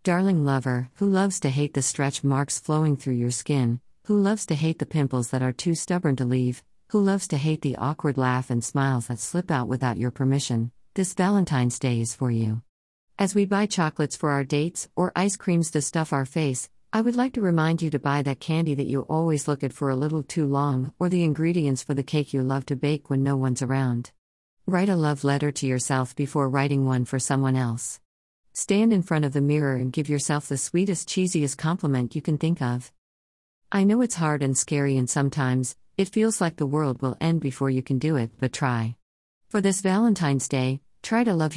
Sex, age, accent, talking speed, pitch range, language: female, 50-69, American, 220 wpm, 130-165 Hz, English